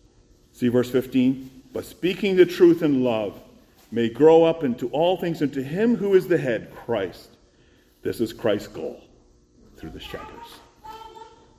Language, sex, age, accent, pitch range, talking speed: English, male, 50-69, American, 120-170 Hz, 150 wpm